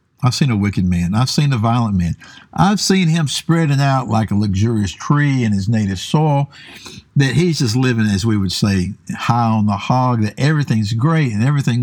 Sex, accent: male, American